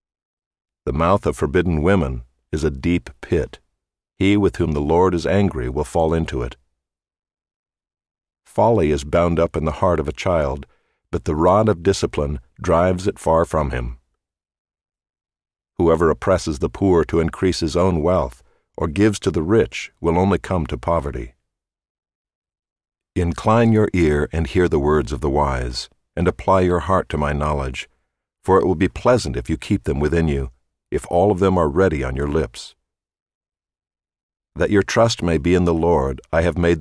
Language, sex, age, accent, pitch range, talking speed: English, male, 50-69, American, 75-95 Hz, 175 wpm